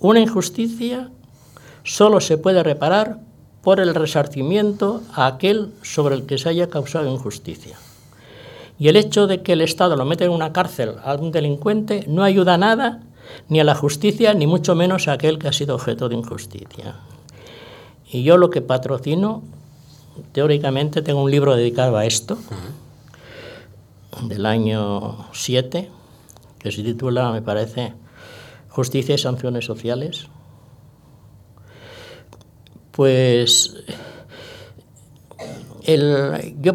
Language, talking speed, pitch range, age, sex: Spanish, 125 wpm, 125-185 Hz, 60-79, male